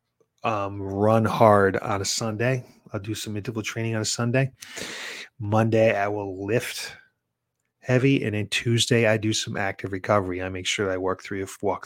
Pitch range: 100-125 Hz